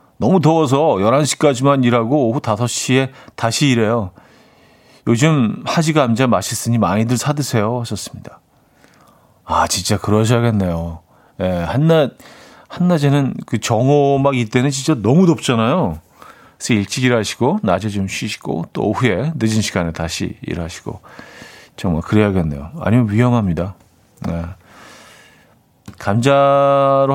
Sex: male